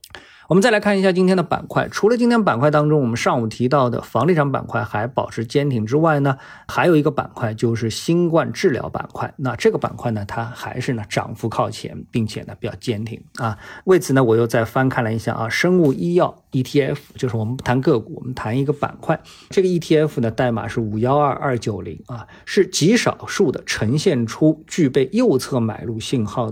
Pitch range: 120-165 Hz